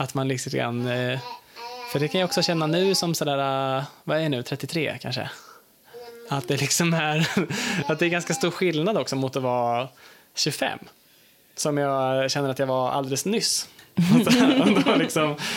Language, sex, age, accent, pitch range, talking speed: English, male, 20-39, Norwegian, 135-175 Hz, 175 wpm